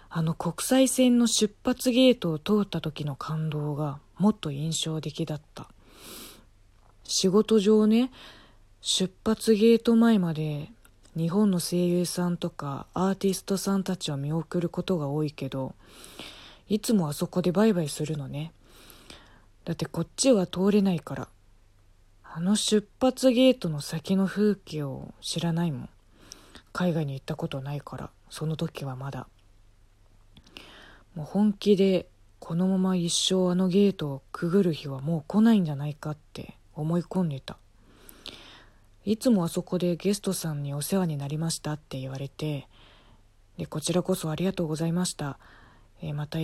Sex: female